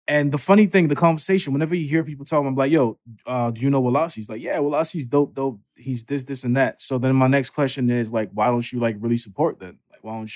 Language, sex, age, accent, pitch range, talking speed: English, male, 20-39, American, 115-145 Hz, 270 wpm